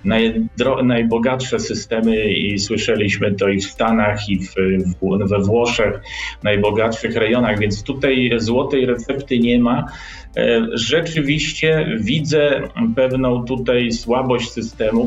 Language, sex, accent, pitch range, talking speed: Polish, male, native, 115-140 Hz, 100 wpm